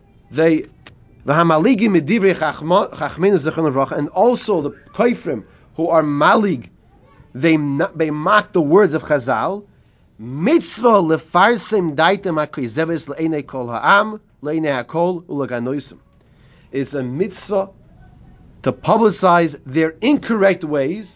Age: 40-59